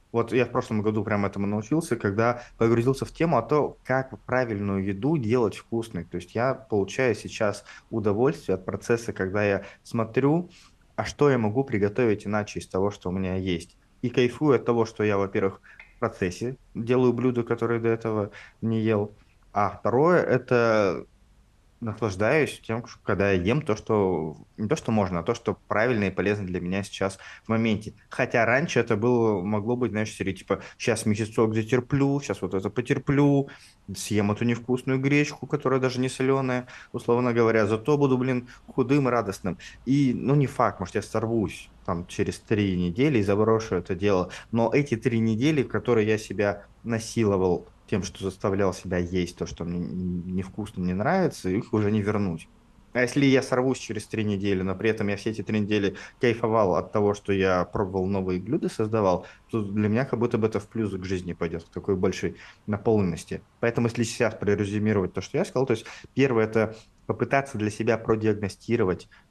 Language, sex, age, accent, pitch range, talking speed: Russian, male, 20-39, native, 100-120 Hz, 180 wpm